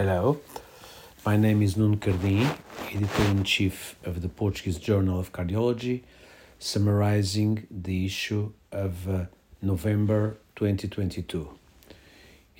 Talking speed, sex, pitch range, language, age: 95 wpm, male, 90-105 Hz, Portuguese, 50-69